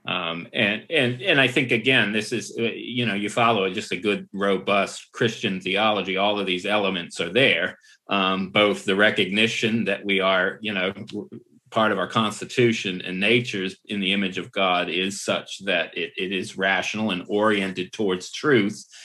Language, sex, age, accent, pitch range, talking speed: English, male, 30-49, American, 95-115 Hz, 175 wpm